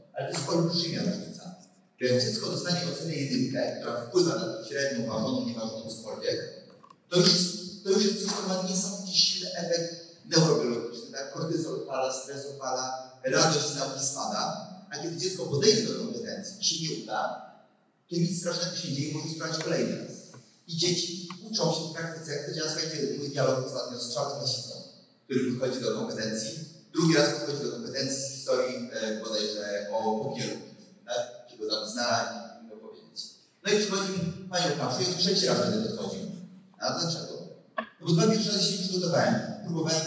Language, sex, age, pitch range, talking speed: Polish, male, 30-49, 145-195 Hz, 170 wpm